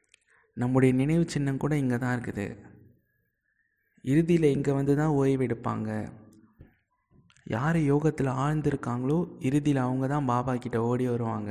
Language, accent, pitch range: Tamil, native, 120-145 Hz